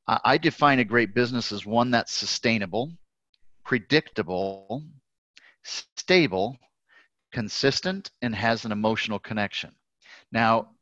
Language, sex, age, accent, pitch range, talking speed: English, male, 40-59, American, 105-125 Hz, 100 wpm